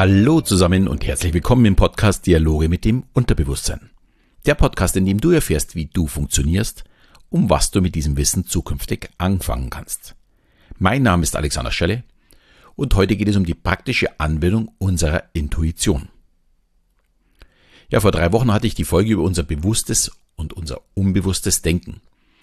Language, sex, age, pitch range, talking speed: German, male, 50-69, 80-105 Hz, 160 wpm